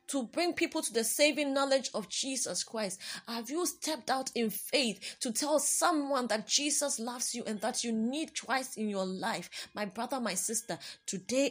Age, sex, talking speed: 20-39, female, 190 wpm